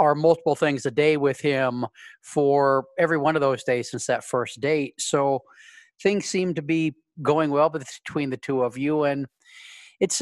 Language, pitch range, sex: English, 135-165 Hz, male